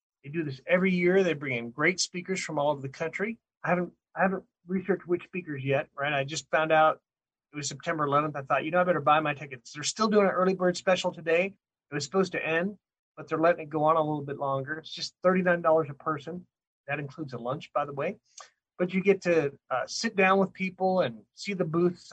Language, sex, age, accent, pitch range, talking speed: English, male, 30-49, American, 145-185 Hz, 245 wpm